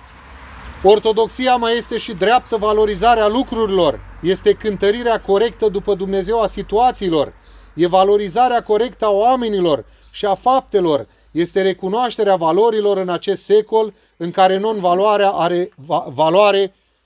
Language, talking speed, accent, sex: Romanian, 115 wpm, native, male